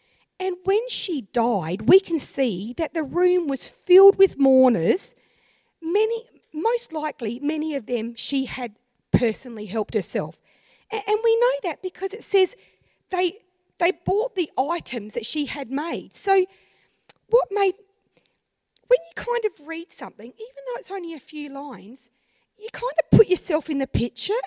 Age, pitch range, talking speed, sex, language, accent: 40-59, 260-400 Hz, 160 wpm, female, English, Australian